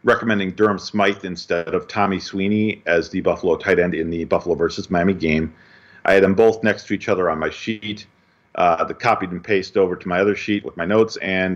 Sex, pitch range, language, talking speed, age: male, 95-120 Hz, English, 225 wpm, 40-59